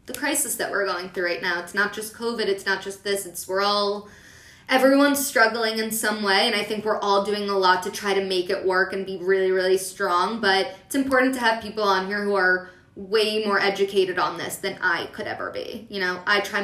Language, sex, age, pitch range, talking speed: English, female, 20-39, 190-225 Hz, 240 wpm